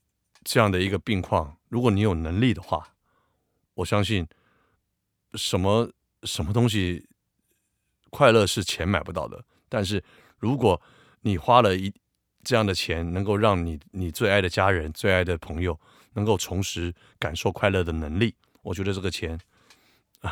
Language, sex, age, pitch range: Chinese, male, 50-69, 90-110 Hz